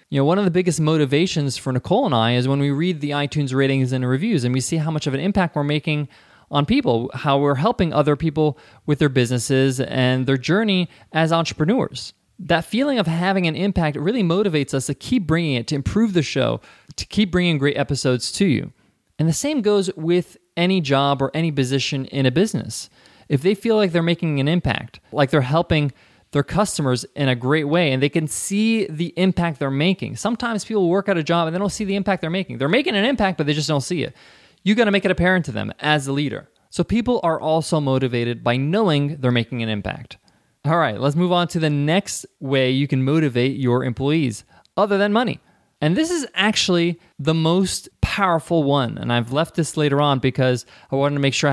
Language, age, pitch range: English, 20-39, 135-180 Hz